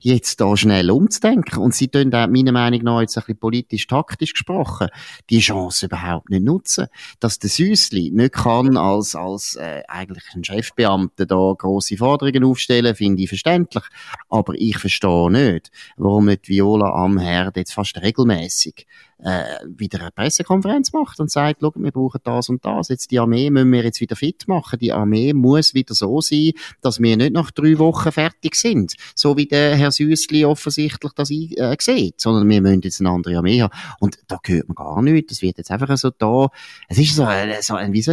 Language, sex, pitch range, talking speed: German, male, 105-140 Hz, 195 wpm